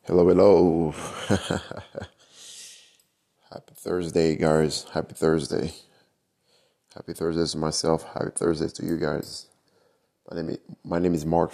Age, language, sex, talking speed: 20-39, English, male, 120 wpm